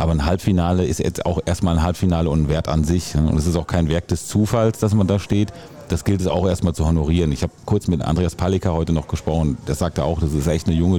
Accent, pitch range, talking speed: German, 80-95 Hz, 275 wpm